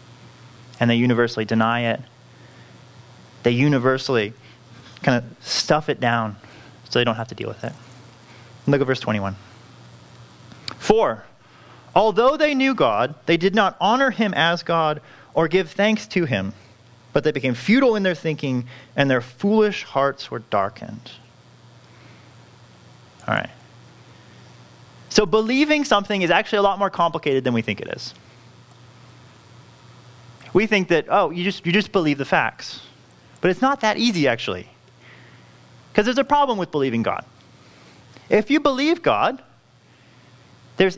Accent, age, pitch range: American, 30-49, 120-190 Hz